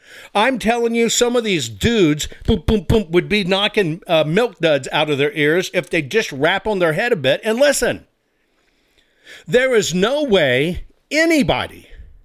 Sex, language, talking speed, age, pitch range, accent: male, English, 160 wpm, 50-69, 150-220 Hz, American